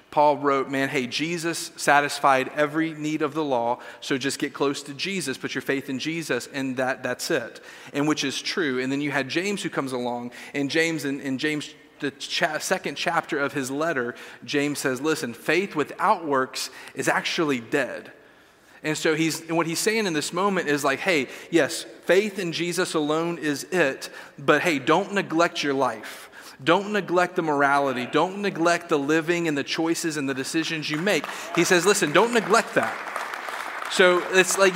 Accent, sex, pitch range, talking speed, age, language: American, male, 140-175 Hz, 185 wpm, 40-59, English